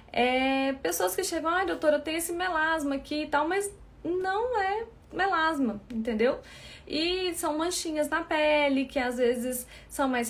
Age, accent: 20-39, Brazilian